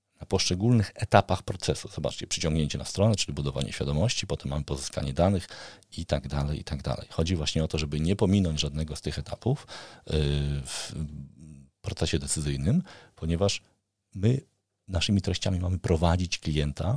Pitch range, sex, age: 75-100 Hz, male, 40-59